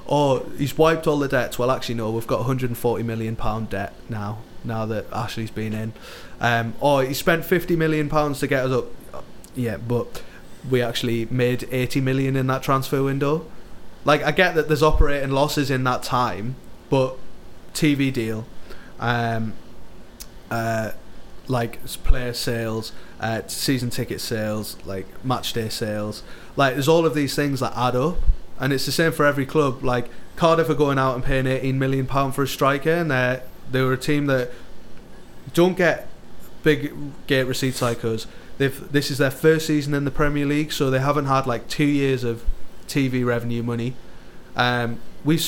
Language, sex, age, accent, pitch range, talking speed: English, male, 20-39, British, 115-145 Hz, 175 wpm